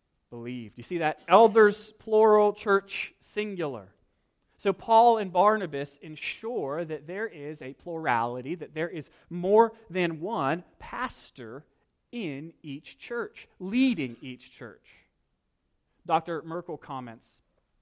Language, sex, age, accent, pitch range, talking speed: English, male, 30-49, American, 125-185 Hz, 115 wpm